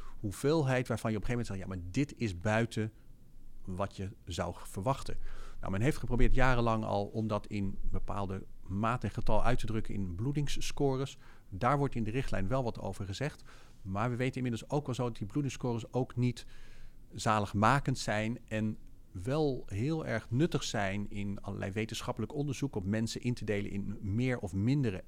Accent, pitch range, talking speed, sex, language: Dutch, 105-130 Hz, 185 wpm, male, Dutch